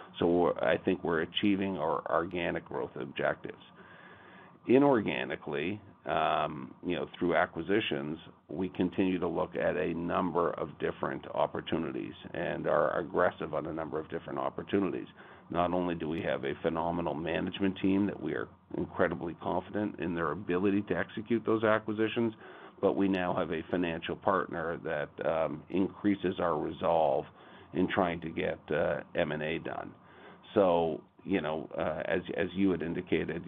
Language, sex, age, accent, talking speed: English, male, 50-69, American, 150 wpm